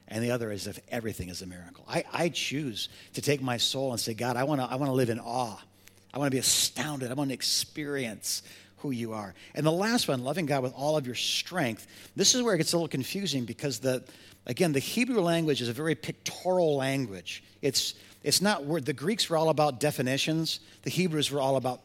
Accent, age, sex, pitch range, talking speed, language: American, 50-69, male, 115-165 Hz, 220 wpm, English